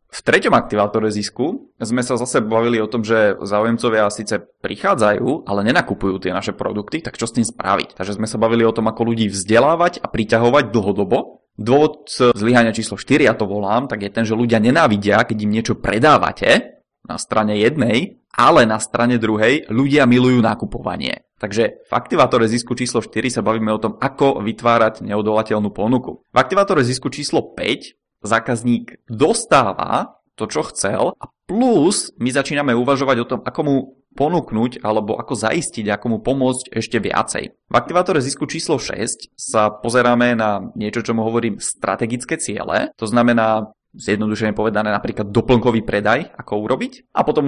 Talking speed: 165 wpm